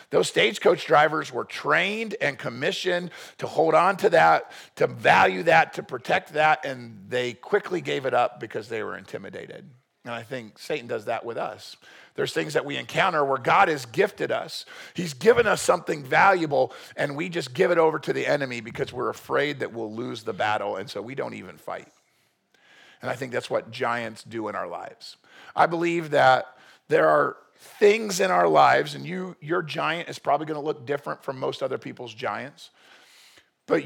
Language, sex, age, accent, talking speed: English, male, 50-69, American, 195 wpm